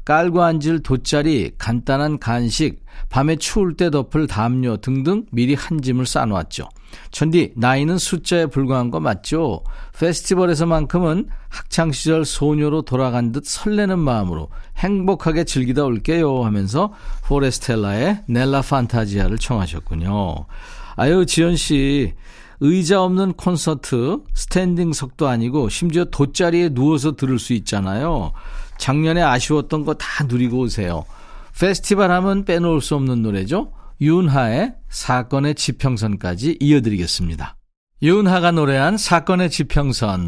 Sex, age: male, 50-69